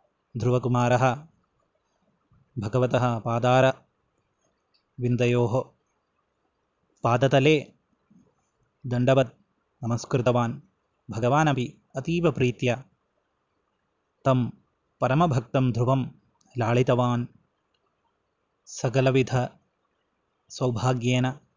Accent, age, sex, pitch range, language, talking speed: native, 20-39, male, 120-135 Hz, Malayalam, 40 wpm